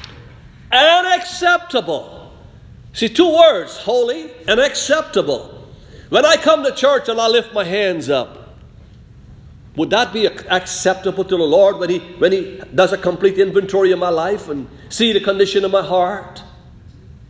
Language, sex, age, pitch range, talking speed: English, male, 50-69, 160-245 Hz, 150 wpm